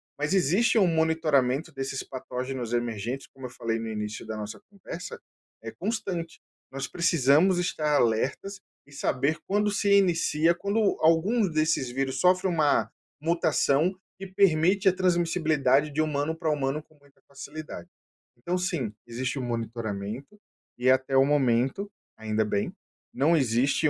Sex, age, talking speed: male, 20-39, 145 wpm